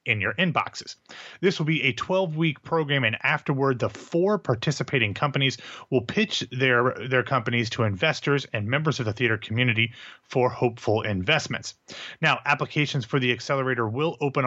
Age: 30-49